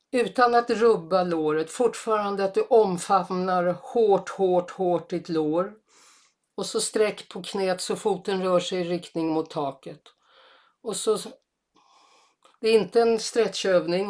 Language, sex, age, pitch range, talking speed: Swedish, female, 50-69, 180-225 Hz, 140 wpm